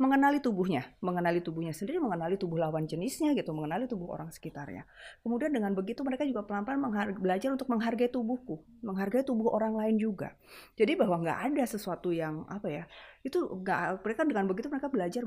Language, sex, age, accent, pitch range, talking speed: Indonesian, female, 30-49, native, 185-250 Hz, 175 wpm